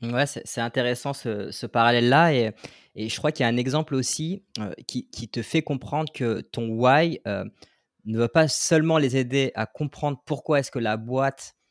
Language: French